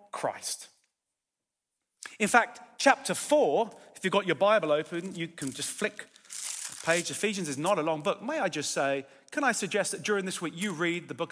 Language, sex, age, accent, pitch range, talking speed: English, male, 40-59, British, 170-215 Hz, 200 wpm